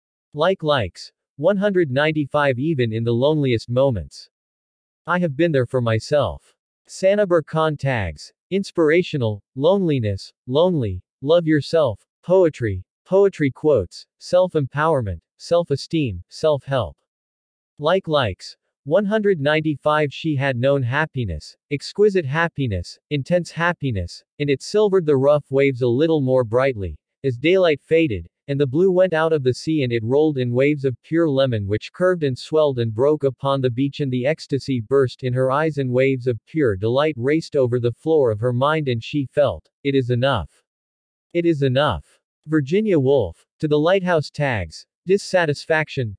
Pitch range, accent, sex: 125-160 Hz, American, male